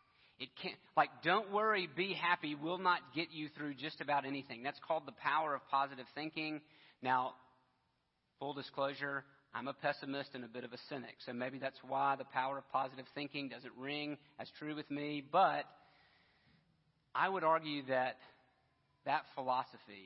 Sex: male